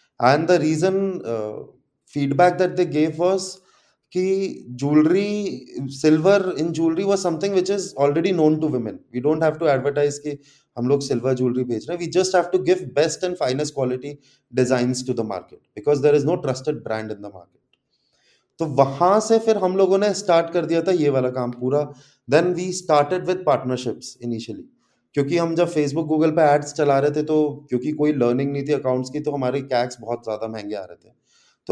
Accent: native